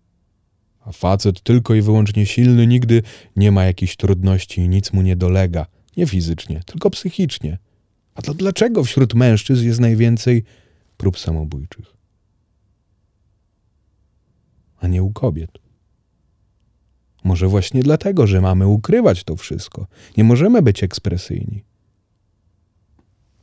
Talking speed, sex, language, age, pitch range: 115 wpm, male, Polish, 30-49, 90-110 Hz